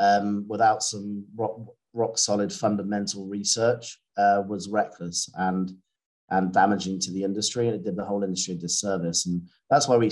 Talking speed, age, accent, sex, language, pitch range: 170 wpm, 30-49, British, male, English, 95-110 Hz